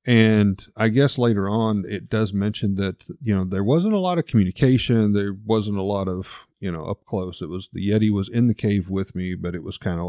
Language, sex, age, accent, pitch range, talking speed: English, male, 40-59, American, 90-115 Hz, 245 wpm